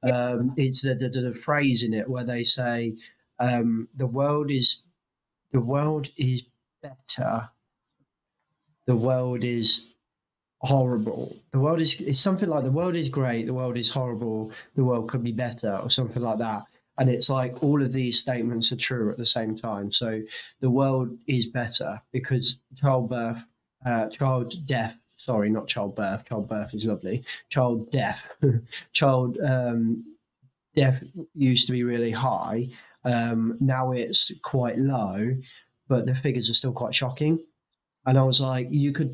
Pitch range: 115-130 Hz